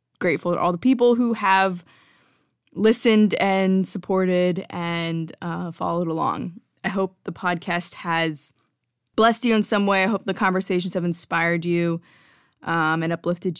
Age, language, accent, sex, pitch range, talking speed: 20-39, English, American, female, 175-225 Hz, 150 wpm